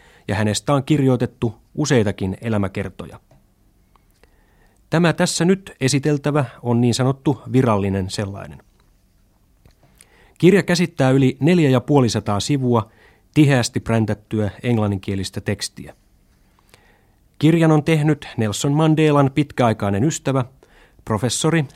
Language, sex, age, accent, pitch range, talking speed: Finnish, male, 30-49, native, 105-135 Hz, 90 wpm